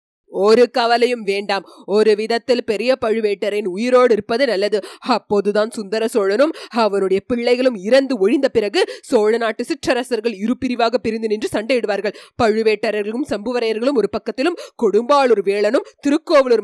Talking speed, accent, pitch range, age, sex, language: 110 wpm, native, 205-260 Hz, 30-49, female, Tamil